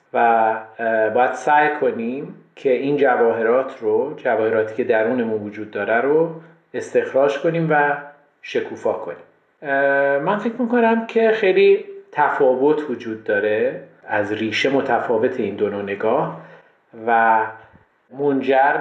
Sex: male